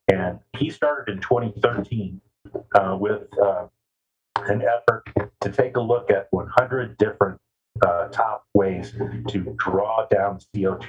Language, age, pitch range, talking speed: English, 50-69, 100-120 Hz, 130 wpm